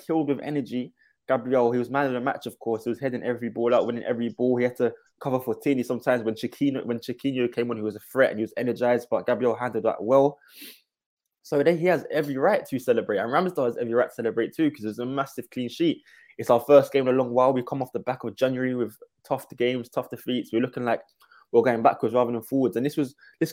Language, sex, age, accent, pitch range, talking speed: English, male, 20-39, British, 120-140 Hz, 260 wpm